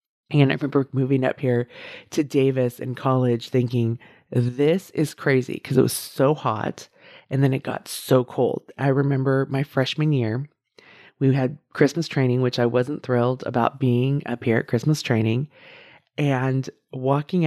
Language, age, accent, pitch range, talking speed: English, 30-49, American, 120-145 Hz, 160 wpm